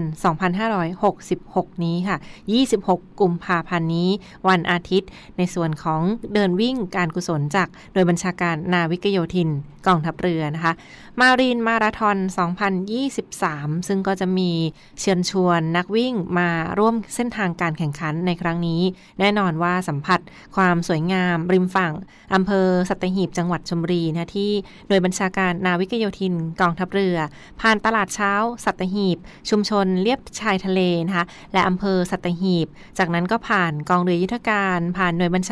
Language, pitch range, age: Thai, 175-200 Hz, 20-39